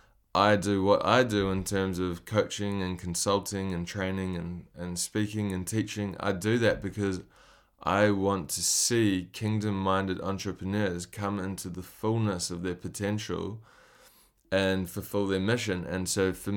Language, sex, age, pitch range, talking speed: English, male, 20-39, 95-105 Hz, 150 wpm